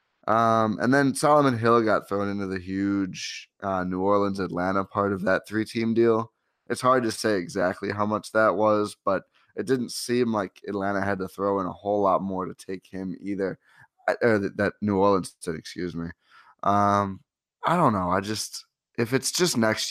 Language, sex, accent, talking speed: English, male, American, 195 wpm